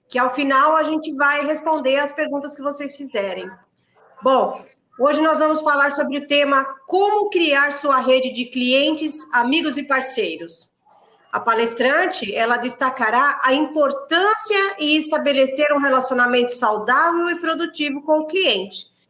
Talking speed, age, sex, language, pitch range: 140 wpm, 40-59, female, Portuguese, 260-305 Hz